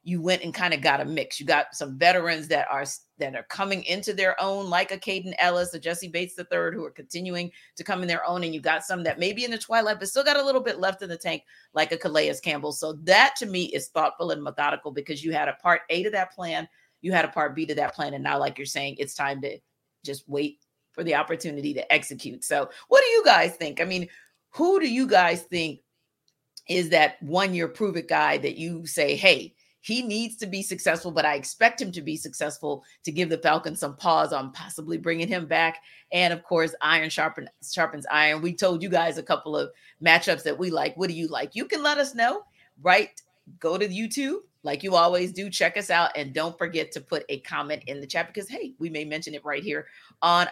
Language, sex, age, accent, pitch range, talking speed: English, female, 40-59, American, 150-195 Hz, 240 wpm